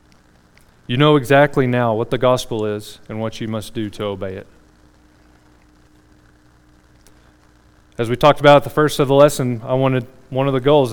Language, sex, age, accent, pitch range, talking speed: English, male, 30-49, American, 110-140 Hz, 175 wpm